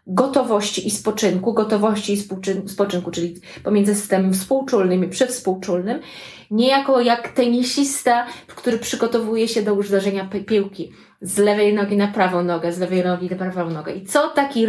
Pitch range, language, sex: 190-235 Hz, Polish, female